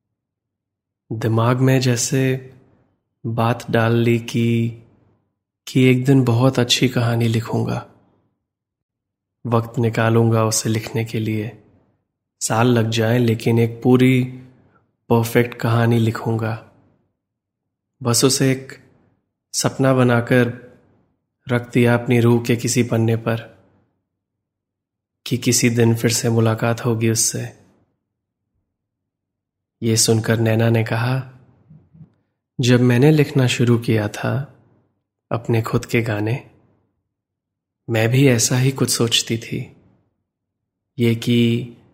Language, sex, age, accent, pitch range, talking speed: Hindi, male, 20-39, native, 110-125 Hz, 105 wpm